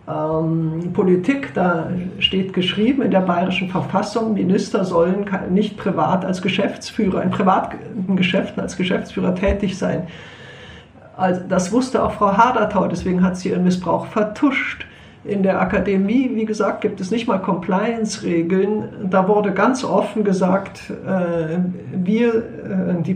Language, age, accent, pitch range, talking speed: German, 50-69, German, 175-210 Hz, 130 wpm